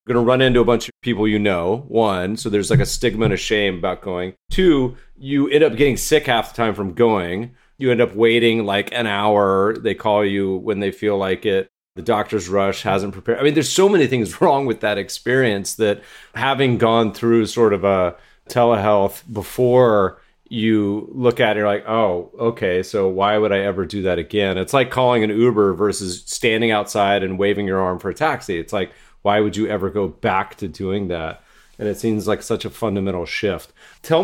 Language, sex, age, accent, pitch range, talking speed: English, male, 30-49, American, 100-125 Hz, 215 wpm